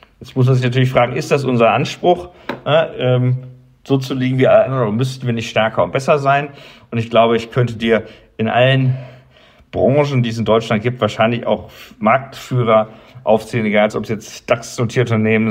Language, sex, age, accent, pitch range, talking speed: English, male, 50-69, German, 110-130 Hz, 185 wpm